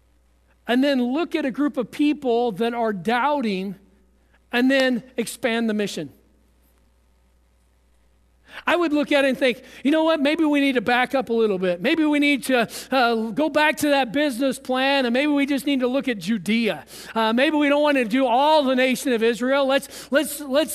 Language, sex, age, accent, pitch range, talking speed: English, male, 40-59, American, 230-295 Hz, 200 wpm